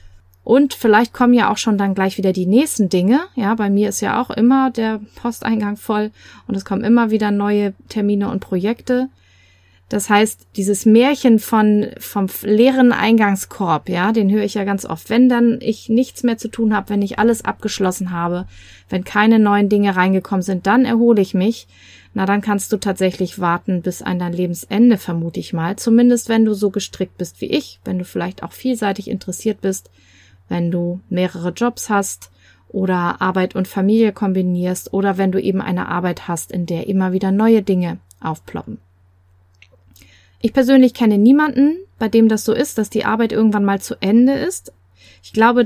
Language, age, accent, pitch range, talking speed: German, 30-49, German, 180-225 Hz, 185 wpm